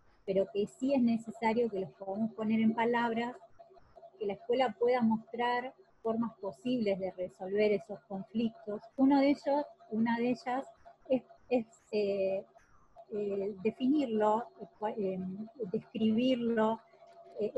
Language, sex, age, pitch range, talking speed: Spanish, female, 30-49, 195-250 Hz, 125 wpm